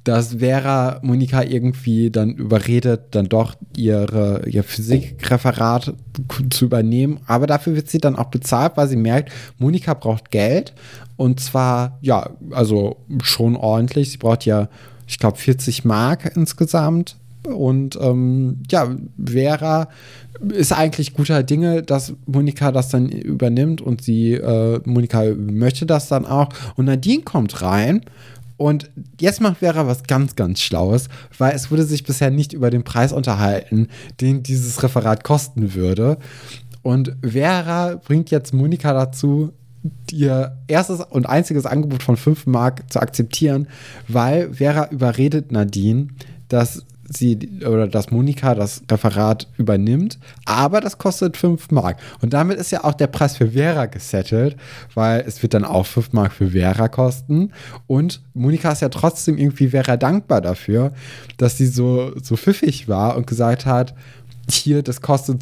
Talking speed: 150 wpm